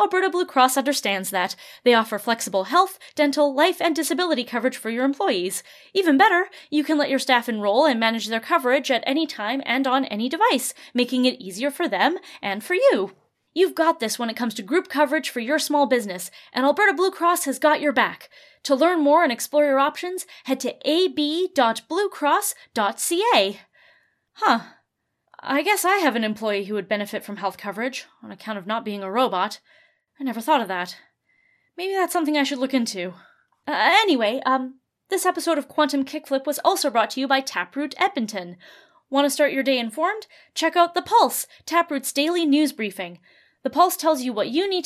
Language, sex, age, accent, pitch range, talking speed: English, female, 20-39, American, 245-335 Hz, 195 wpm